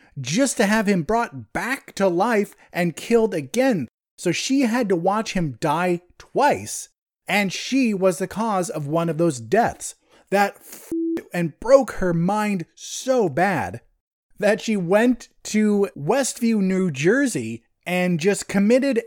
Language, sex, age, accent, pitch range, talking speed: English, male, 30-49, American, 170-230 Hz, 145 wpm